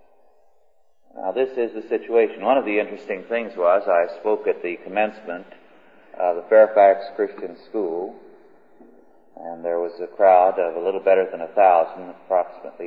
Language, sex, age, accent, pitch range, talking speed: English, male, 40-59, American, 95-150 Hz, 160 wpm